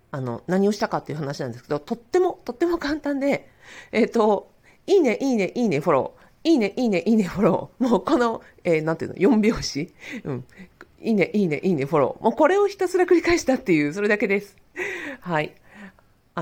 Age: 40-59